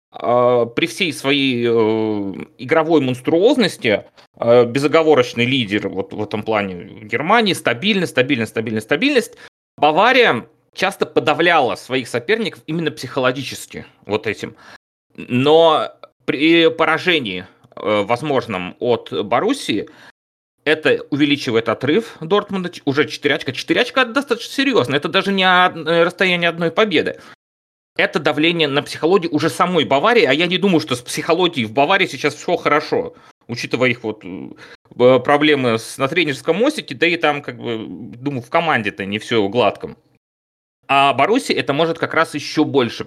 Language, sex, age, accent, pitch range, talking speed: Russian, male, 30-49, native, 120-165 Hz, 135 wpm